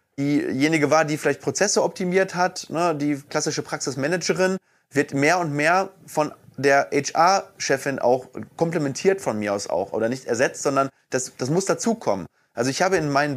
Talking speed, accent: 160 wpm, German